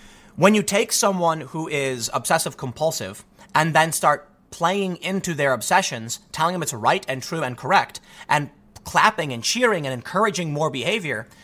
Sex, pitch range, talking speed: male, 135-185 Hz, 155 wpm